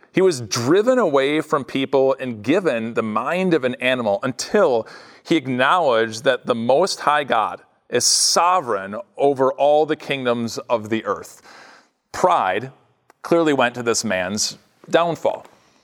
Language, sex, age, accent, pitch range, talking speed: English, male, 40-59, American, 135-185 Hz, 140 wpm